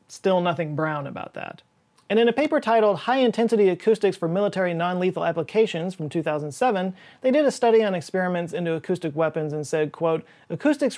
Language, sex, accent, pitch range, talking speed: English, male, American, 155-195 Hz, 170 wpm